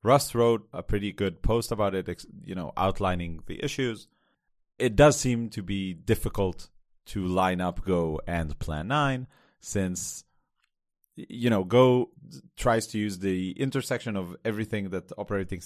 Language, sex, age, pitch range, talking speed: English, male, 30-49, 90-115 Hz, 150 wpm